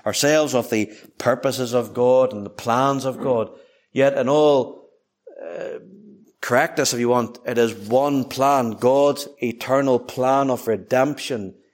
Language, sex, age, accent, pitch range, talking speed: English, male, 60-79, Irish, 125-155 Hz, 145 wpm